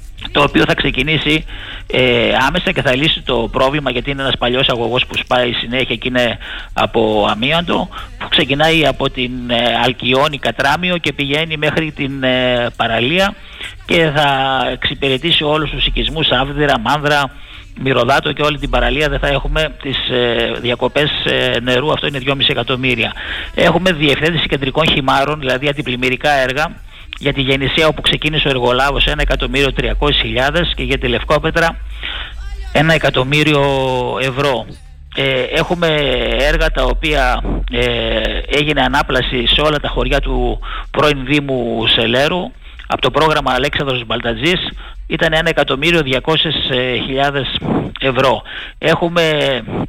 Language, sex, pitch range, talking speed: Greek, male, 125-150 Hz, 125 wpm